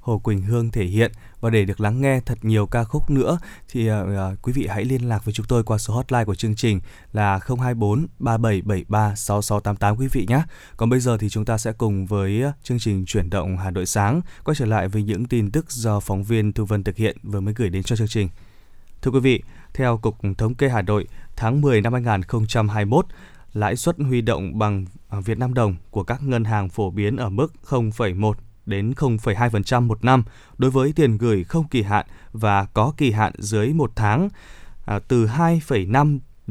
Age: 20-39